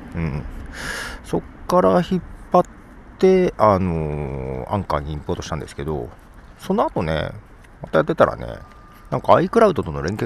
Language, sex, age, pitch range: Japanese, male, 40-59, 80-120 Hz